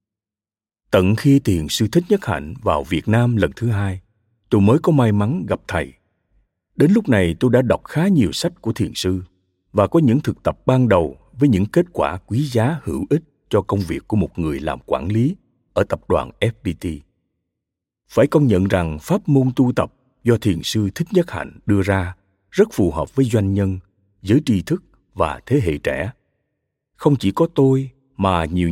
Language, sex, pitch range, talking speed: Vietnamese, male, 95-130 Hz, 200 wpm